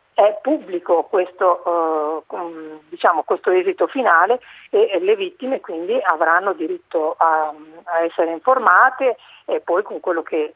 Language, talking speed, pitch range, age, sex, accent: Italian, 120 wpm, 160-260 Hz, 40-59, female, native